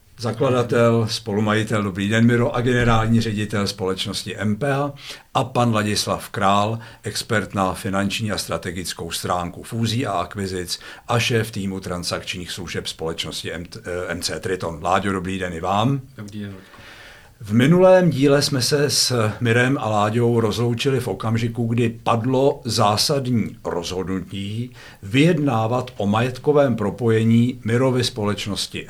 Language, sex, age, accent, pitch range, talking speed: Czech, male, 60-79, native, 100-125 Hz, 125 wpm